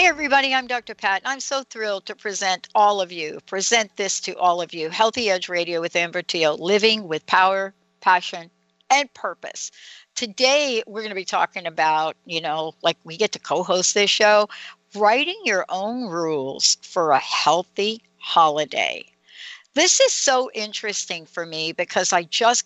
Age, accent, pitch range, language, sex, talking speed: 60-79, American, 170-230 Hz, English, female, 170 wpm